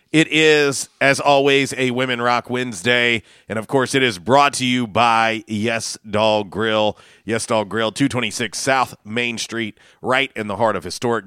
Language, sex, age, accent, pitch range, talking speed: English, male, 40-59, American, 105-130 Hz, 175 wpm